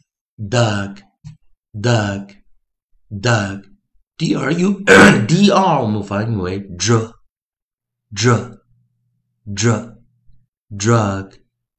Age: 60-79